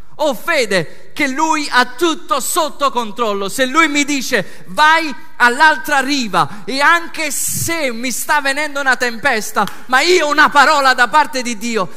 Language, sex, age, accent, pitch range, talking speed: Italian, male, 40-59, native, 185-275 Hz, 160 wpm